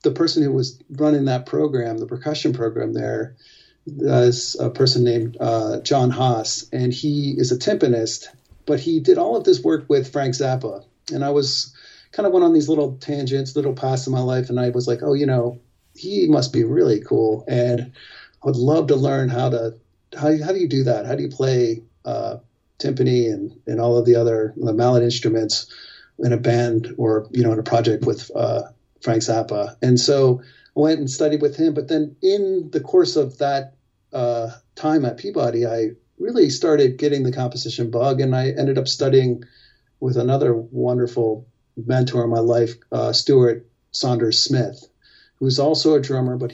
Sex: male